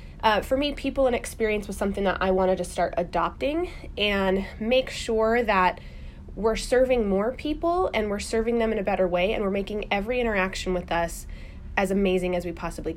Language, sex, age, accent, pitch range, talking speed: English, female, 20-39, American, 180-215 Hz, 195 wpm